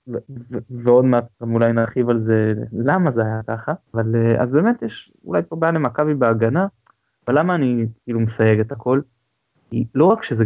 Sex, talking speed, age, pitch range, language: male, 190 wpm, 20-39, 110-145 Hz, Hebrew